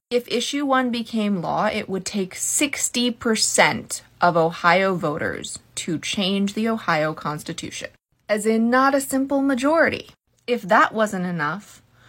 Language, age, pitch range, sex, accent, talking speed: English, 20-39, 165-230 Hz, female, American, 135 wpm